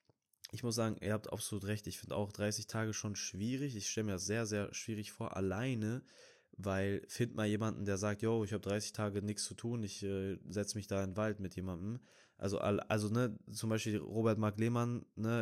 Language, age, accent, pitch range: German, 20-39, German, 100-115 Hz